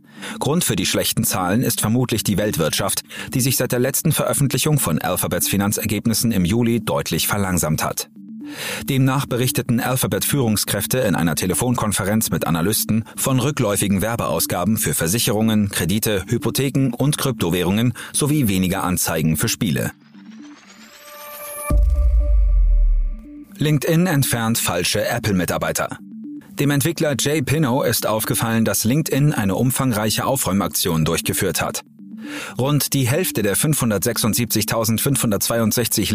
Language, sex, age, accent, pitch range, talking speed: German, male, 40-59, German, 100-140 Hz, 110 wpm